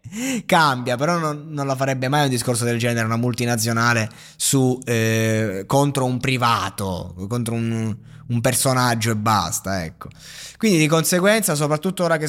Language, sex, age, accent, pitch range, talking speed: Italian, male, 20-39, native, 120-160 Hz, 150 wpm